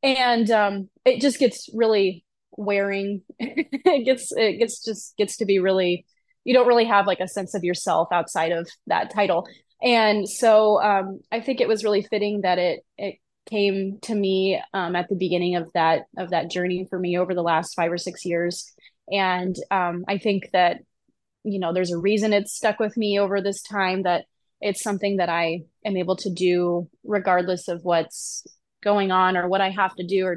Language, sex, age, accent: English, female, 20-39, American